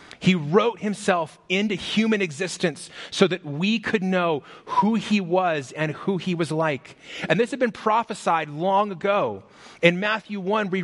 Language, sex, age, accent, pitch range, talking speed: English, male, 30-49, American, 150-190 Hz, 165 wpm